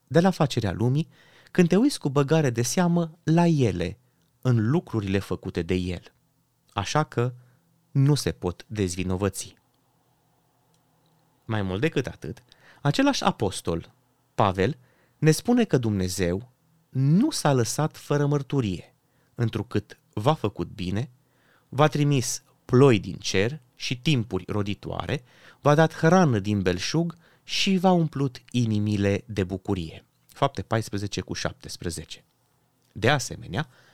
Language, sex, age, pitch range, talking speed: Romanian, male, 30-49, 100-150 Hz, 125 wpm